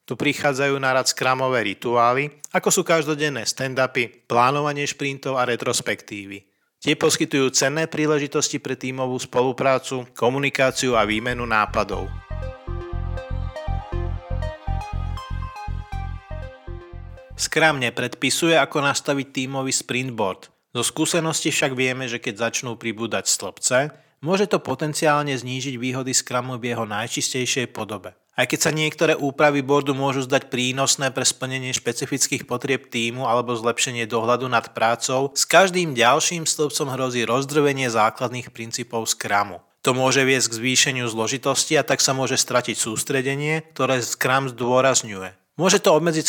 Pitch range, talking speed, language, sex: 115-140 Hz, 125 wpm, Slovak, male